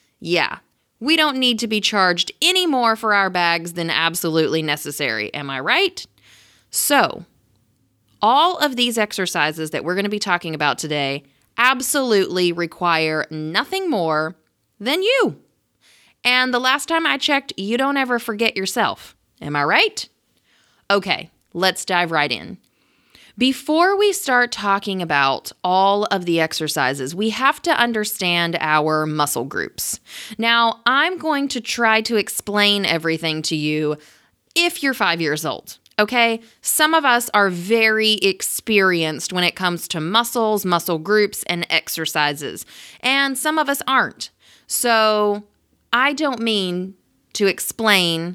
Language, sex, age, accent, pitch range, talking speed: English, female, 30-49, American, 165-245 Hz, 140 wpm